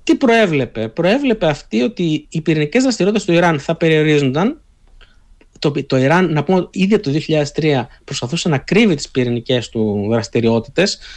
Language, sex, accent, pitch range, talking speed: Greek, male, native, 125-190 Hz, 150 wpm